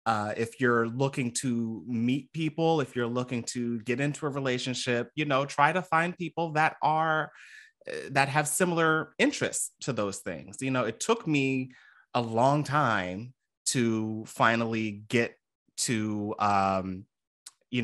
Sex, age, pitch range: male, 30-49, 100-125 Hz